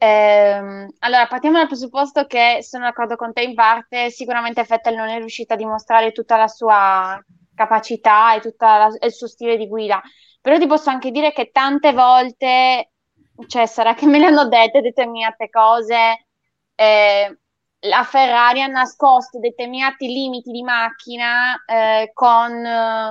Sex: female